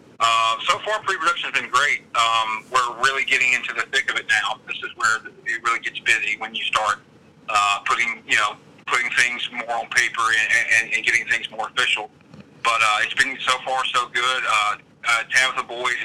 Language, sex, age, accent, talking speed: English, male, 40-59, American, 205 wpm